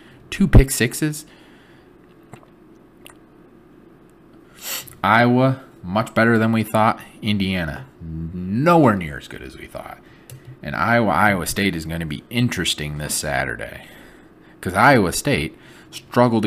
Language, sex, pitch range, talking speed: English, male, 80-100 Hz, 115 wpm